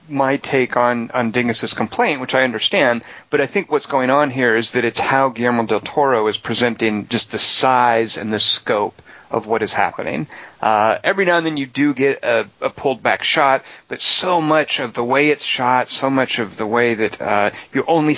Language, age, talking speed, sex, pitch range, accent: English, 40-59, 215 wpm, male, 115-135 Hz, American